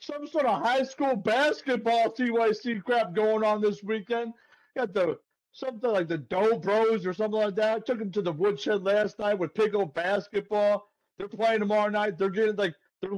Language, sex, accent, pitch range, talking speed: English, male, American, 180-210 Hz, 190 wpm